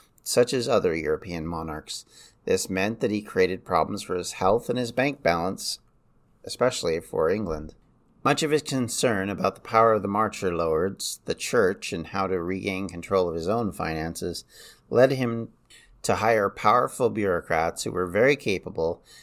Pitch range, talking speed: 90-115 Hz, 165 wpm